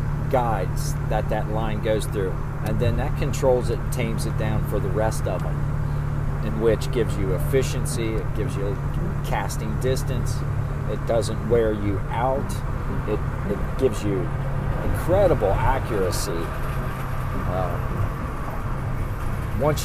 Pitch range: 115-135 Hz